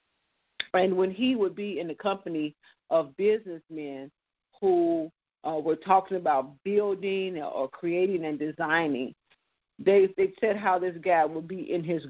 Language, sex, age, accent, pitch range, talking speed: English, female, 50-69, American, 160-195 Hz, 150 wpm